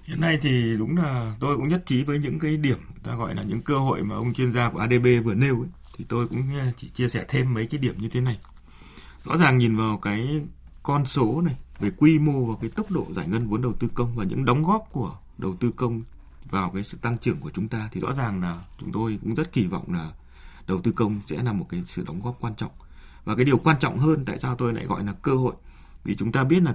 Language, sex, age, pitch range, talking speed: Vietnamese, male, 20-39, 100-140 Hz, 265 wpm